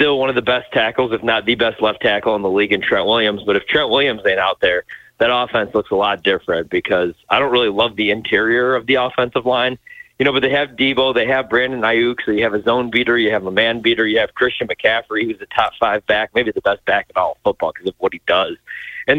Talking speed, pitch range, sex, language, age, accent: 265 wpm, 115-175 Hz, male, English, 30-49, American